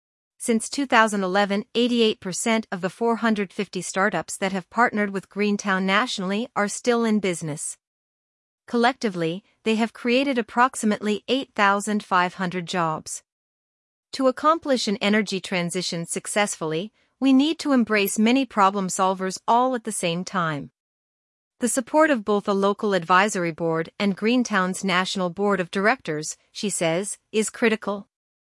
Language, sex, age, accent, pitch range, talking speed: English, female, 40-59, American, 185-230 Hz, 125 wpm